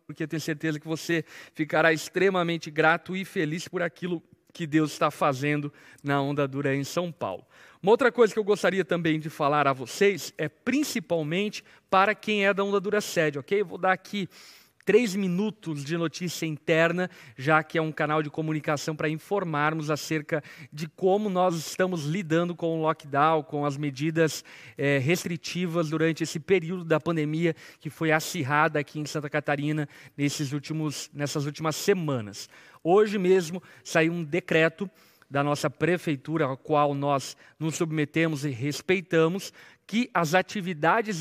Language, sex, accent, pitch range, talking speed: Portuguese, male, Brazilian, 155-190 Hz, 155 wpm